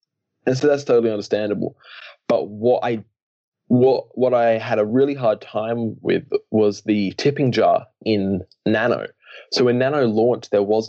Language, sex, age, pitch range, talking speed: English, male, 20-39, 100-120 Hz, 160 wpm